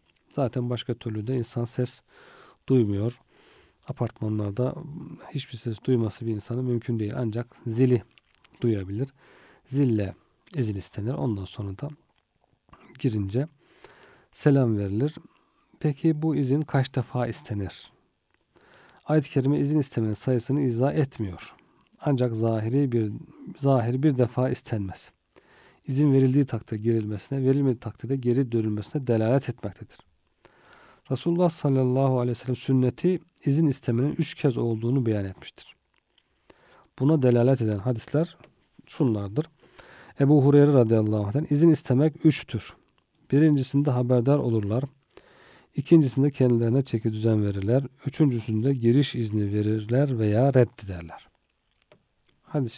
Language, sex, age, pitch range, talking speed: Turkish, male, 40-59, 115-140 Hz, 110 wpm